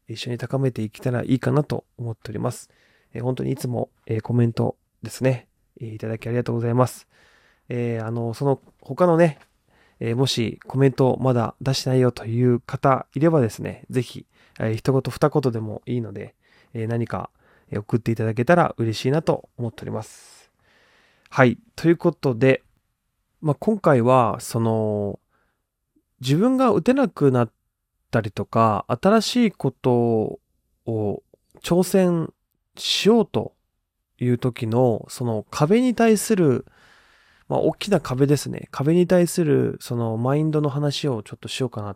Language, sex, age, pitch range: Japanese, male, 20-39, 115-145 Hz